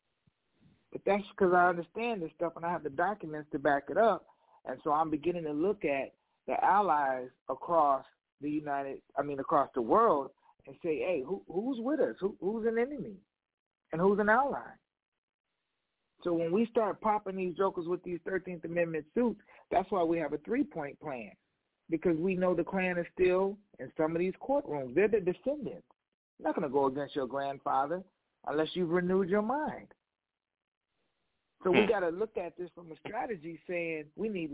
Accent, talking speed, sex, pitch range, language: American, 180 wpm, male, 160-215 Hz, English